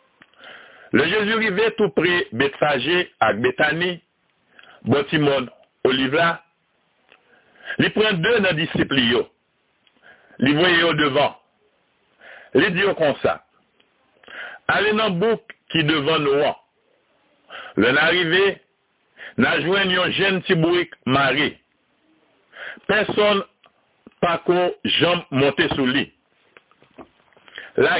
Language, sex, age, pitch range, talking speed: French, male, 60-79, 155-210 Hz, 100 wpm